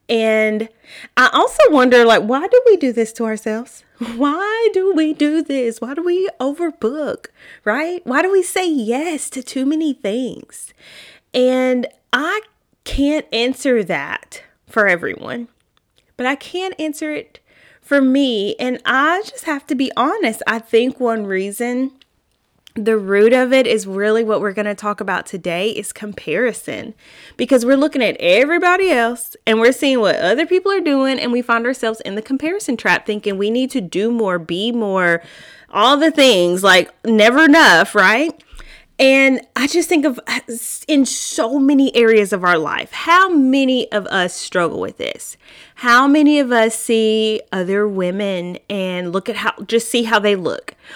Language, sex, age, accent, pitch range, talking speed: English, female, 20-39, American, 220-295 Hz, 170 wpm